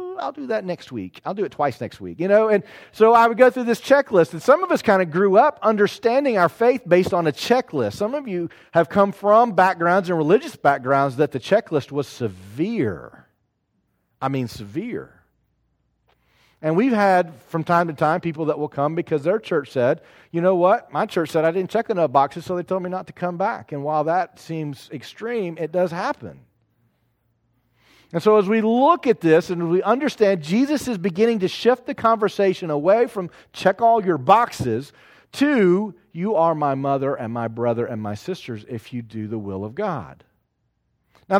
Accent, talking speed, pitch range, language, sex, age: American, 200 wpm, 140-205 Hz, English, male, 40-59